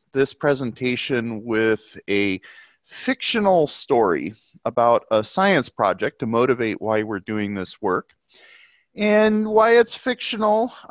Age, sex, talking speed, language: 30-49, male, 115 wpm, English